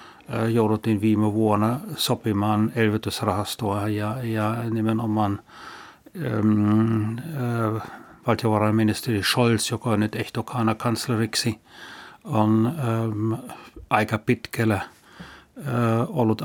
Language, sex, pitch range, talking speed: Finnish, male, 110-125 Hz, 85 wpm